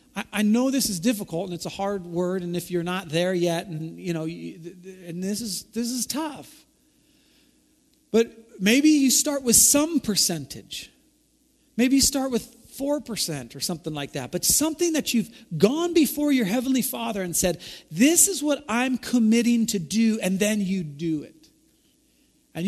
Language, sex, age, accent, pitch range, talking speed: English, male, 40-59, American, 175-255 Hz, 170 wpm